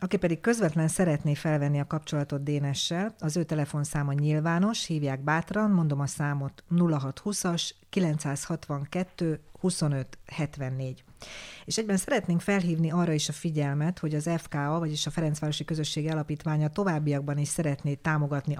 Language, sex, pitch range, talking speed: Hungarian, female, 145-175 Hz, 130 wpm